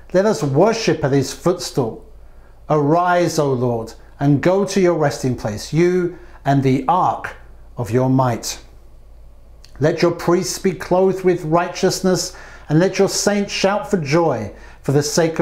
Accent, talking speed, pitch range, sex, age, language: British, 150 wpm, 135-190 Hz, male, 50-69, English